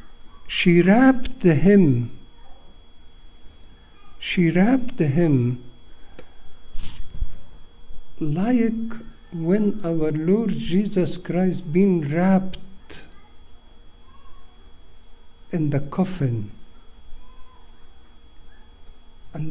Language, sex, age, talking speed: English, male, 60-79, 55 wpm